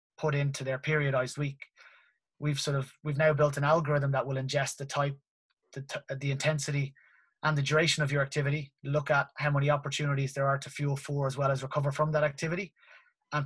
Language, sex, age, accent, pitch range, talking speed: English, male, 20-39, Irish, 135-155 Hz, 205 wpm